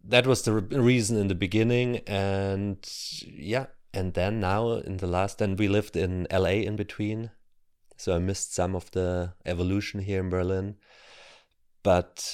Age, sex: 30-49, male